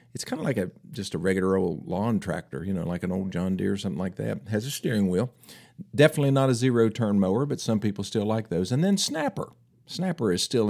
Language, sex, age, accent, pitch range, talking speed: English, male, 50-69, American, 100-130 Hz, 240 wpm